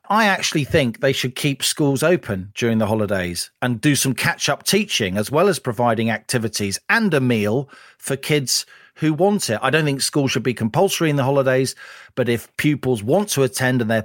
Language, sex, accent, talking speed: English, male, British, 200 wpm